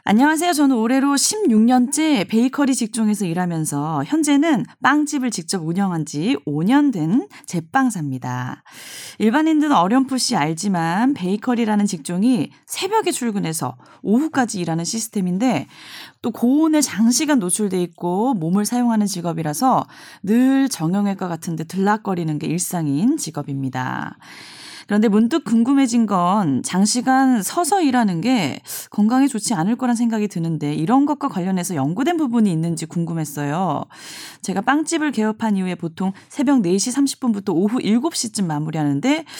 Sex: female